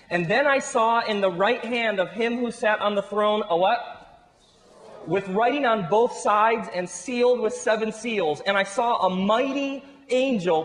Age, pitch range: 30-49, 170-230 Hz